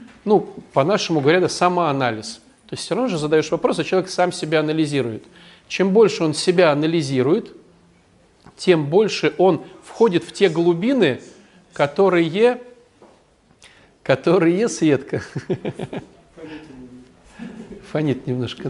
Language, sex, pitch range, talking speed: Russian, male, 140-200 Hz, 110 wpm